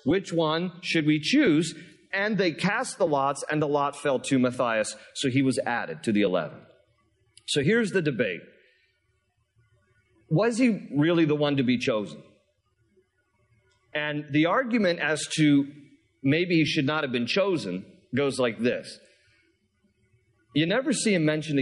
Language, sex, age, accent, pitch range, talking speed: English, male, 40-59, American, 125-160 Hz, 155 wpm